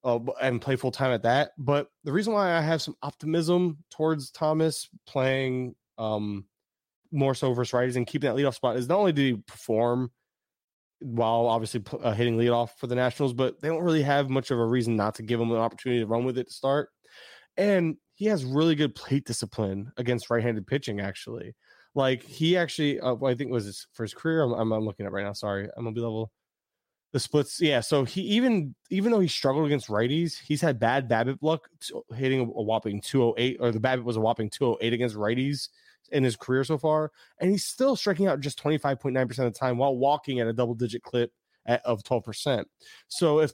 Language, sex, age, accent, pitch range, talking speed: English, male, 20-39, American, 115-150 Hz, 215 wpm